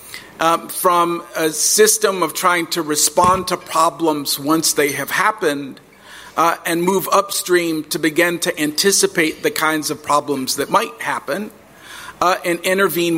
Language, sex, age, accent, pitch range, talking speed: English, male, 50-69, American, 155-180 Hz, 145 wpm